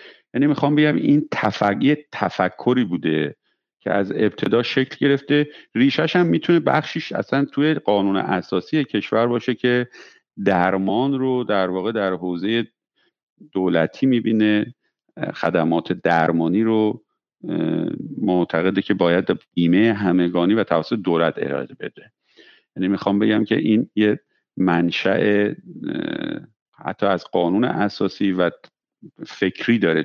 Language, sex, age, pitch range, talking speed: Persian, male, 50-69, 95-130 Hz, 115 wpm